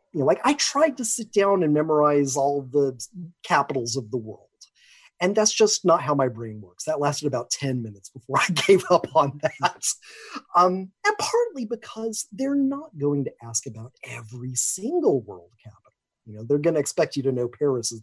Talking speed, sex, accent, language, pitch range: 200 wpm, male, American, English, 135-195 Hz